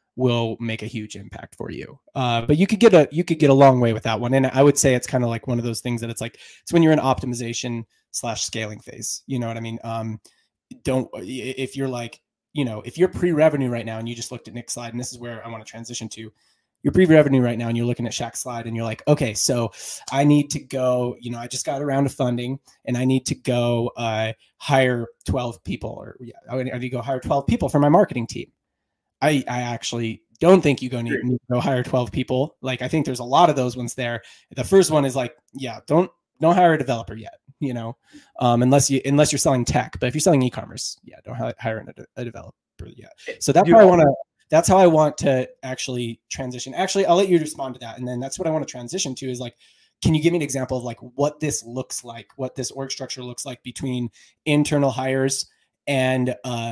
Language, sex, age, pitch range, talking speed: English, male, 20-39, 120-140 Hz, 250 wpm